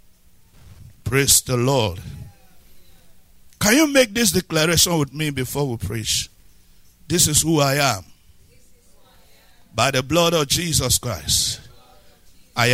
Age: 60-79